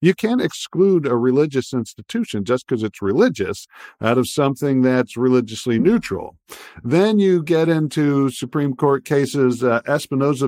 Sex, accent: male, American